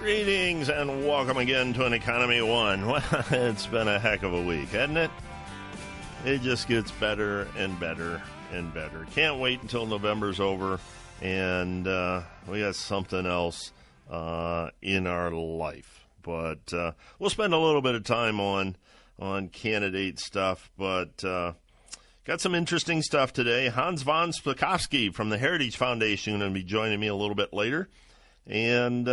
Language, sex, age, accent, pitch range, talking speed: English, male, 50-69, American, 95-125 Hz, 155 wpm